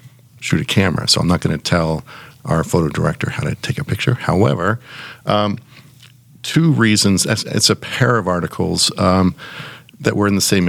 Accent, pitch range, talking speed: American, 85-125 Hz, 175 wpm